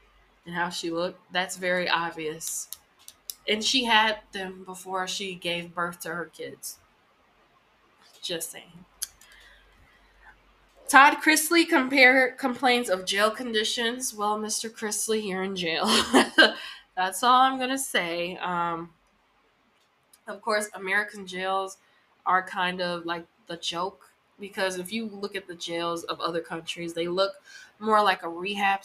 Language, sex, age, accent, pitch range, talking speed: English, female, 20-39, American, 175-220 Hz, 135 wpm